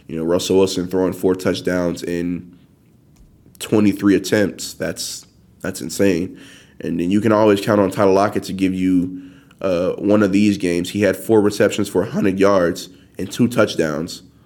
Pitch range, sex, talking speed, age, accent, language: 90-105 Hz, male, 165 wpm, 20-39, American, English